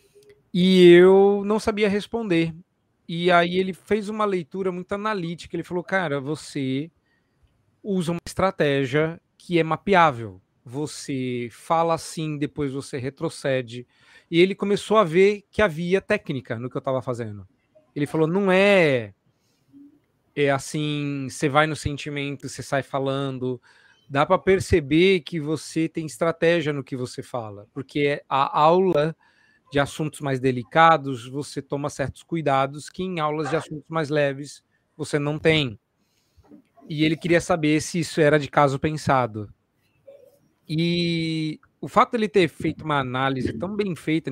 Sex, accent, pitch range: male, Brazilian, 140-185 Hz